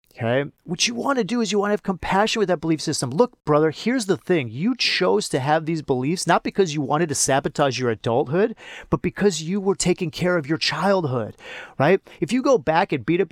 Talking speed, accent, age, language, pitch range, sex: 235 wpm, American, 30-49, English, 135-190 Hz, male